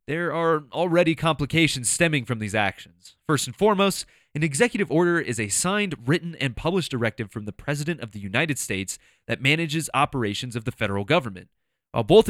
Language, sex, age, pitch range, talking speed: English, male, 20-39, 110-165 Hz, 180 wpm